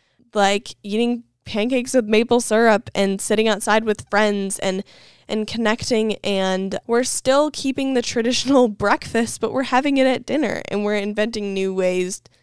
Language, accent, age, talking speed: English, American, 10-29, 155 wpm